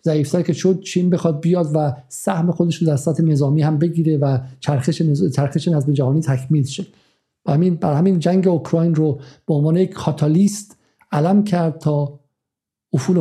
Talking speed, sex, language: 145 wpm, male, Persian